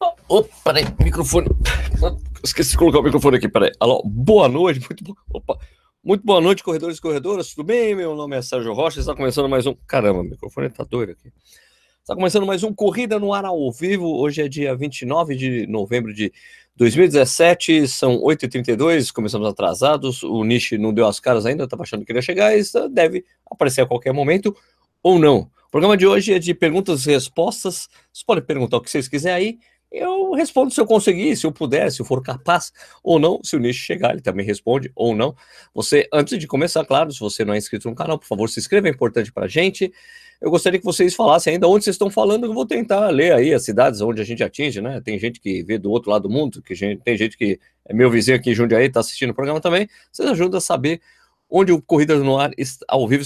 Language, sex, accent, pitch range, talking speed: Portuguese, male, Brazilian, 120-185 Hz, 225 wpm